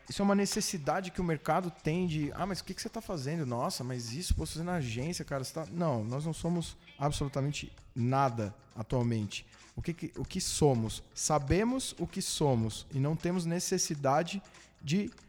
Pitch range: 130-180 Hz